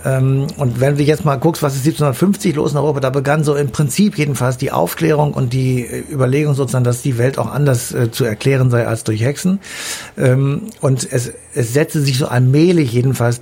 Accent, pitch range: German, 120-145 Hz